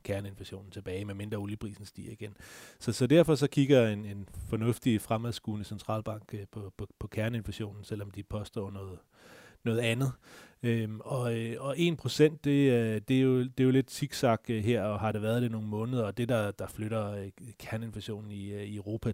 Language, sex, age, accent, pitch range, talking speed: Danish, male, 30-49, native, 100-115 Hz, 180 wpm